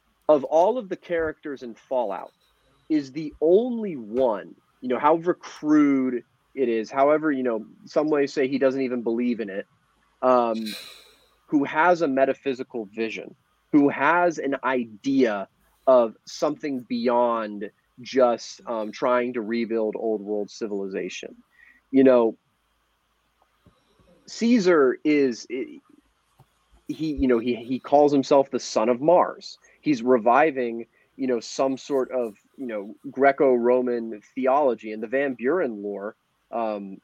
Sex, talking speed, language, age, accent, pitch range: male, 135 wpm, English, 30-49, American, 115-145 Hz